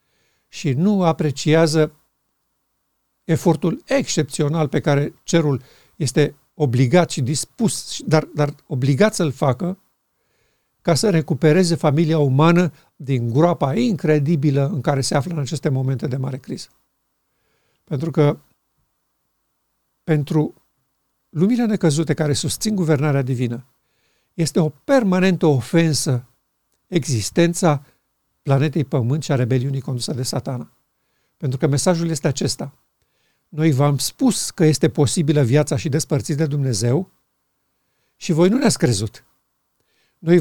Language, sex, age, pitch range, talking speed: Romanian, male, 60-79, 140-170 Hz, 115 wpm